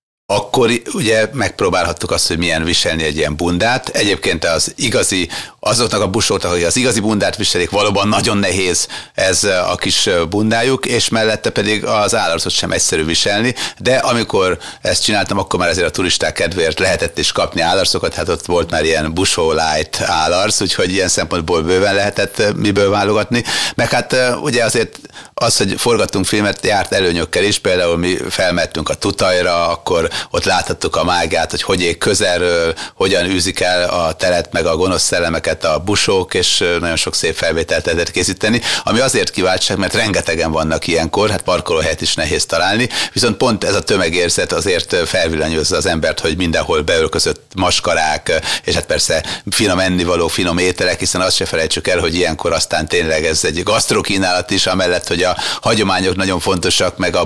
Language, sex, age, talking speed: Hungarian, male, 30-49, 170 wpm